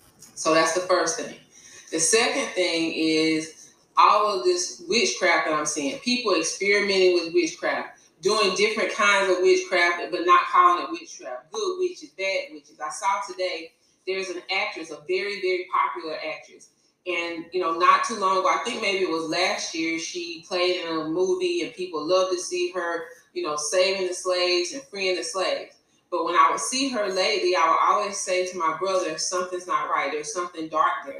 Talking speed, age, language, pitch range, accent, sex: 190 wpm, 20-39, English, 175-280 Hz, American, female